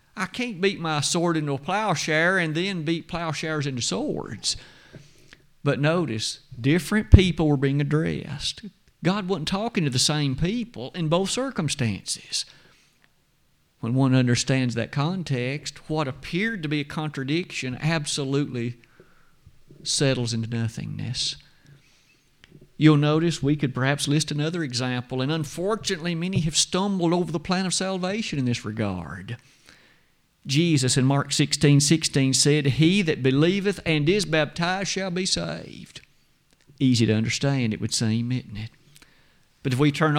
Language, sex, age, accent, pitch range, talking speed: English, male, 50-69, American, 135-175 Hz, 140 wpm